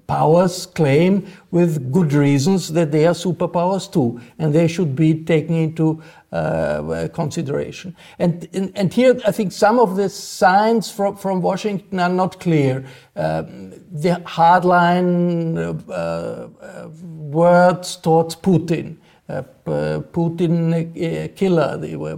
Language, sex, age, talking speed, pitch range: German, male, 50-69, 125 wpm, 155-185 Hz